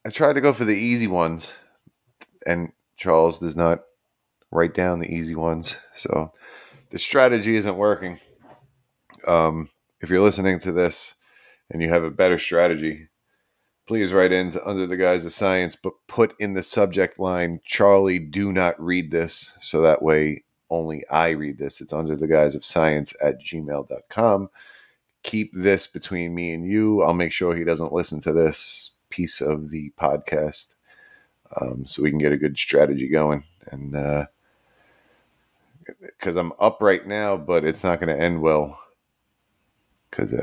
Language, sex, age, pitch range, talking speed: English, male, 30-49, 75-100 Hz, 165 wpm